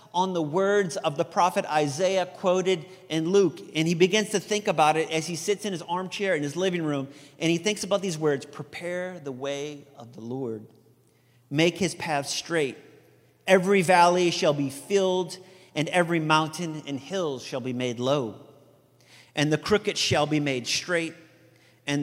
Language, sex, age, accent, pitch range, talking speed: English, male, 40-59, American, 130-180 Hz, 175 wpm